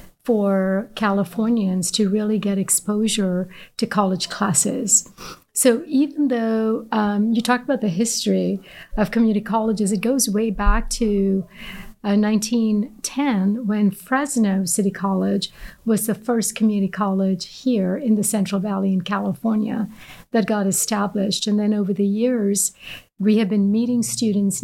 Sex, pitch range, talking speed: female, 195-230 Hz, 140 wpm